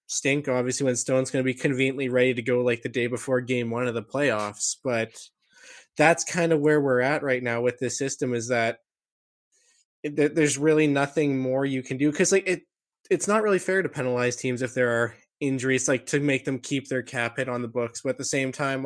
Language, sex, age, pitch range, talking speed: English, male, 20-39, 125-150 Hz, 225 wpm